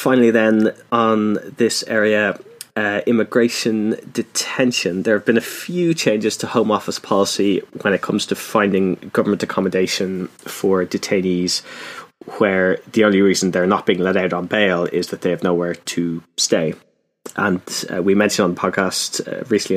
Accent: British